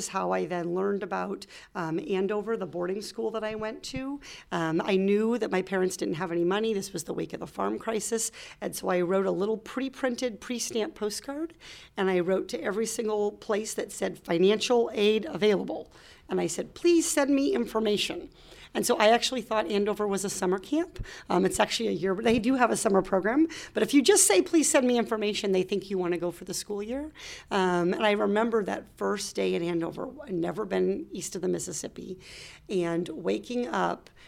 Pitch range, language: 185-235 Hz, English